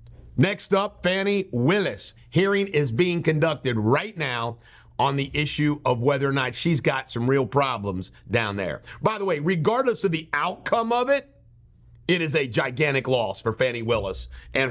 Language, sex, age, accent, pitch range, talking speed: English, male, 50-69, American, 115-165 Hz, 170 wpm